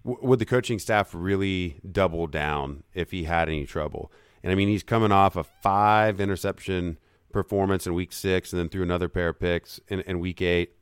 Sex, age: male, 40-59